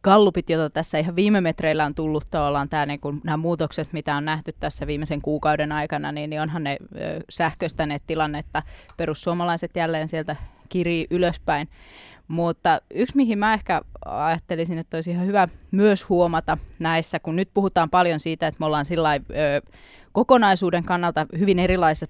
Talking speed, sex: 155 wpm, female